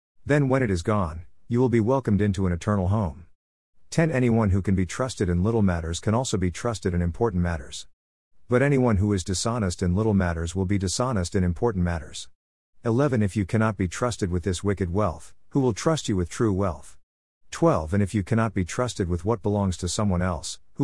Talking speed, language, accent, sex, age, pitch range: 215 wpm, English, American, male, 50-69, 85-115 Hz